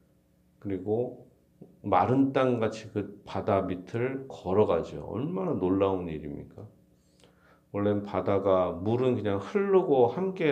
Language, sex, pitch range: Korean, male, 85-115 Hz